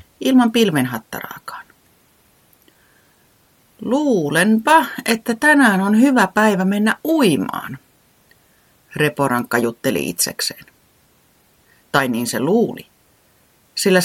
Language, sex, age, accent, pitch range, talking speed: Finnish, female, 30-49, native, 135-205 Hz, 75 wpm